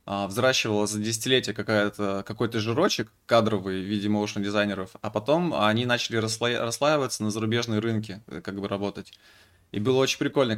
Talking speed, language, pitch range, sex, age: 135 wpm, Russian, 100-115 Hz, male, 20-39